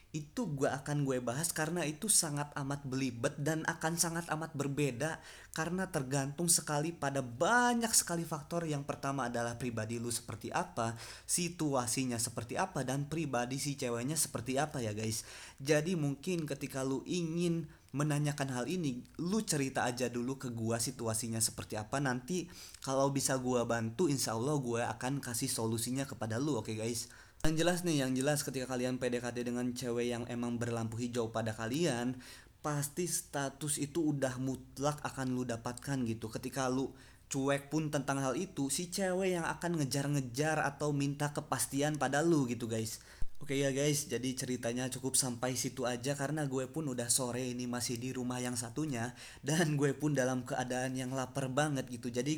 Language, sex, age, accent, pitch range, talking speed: Indonesian, male, 20-39, native, 125-150 Hz, 170 wpm